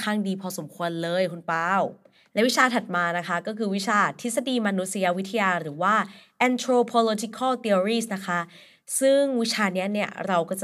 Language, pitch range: Thai, 190-230 Hz